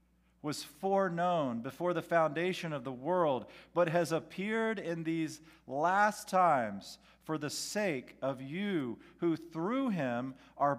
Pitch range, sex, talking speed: 120-185 Hz, male, 135 wpm